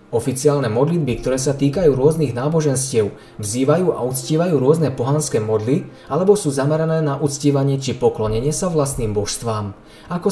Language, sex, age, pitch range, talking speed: Slovak, male, 20-39, 115-155 Hz, 140 wpm